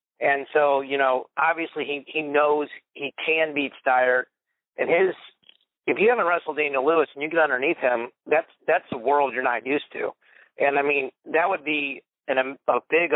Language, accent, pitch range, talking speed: English, American, 130-150 Hz, 195 wpm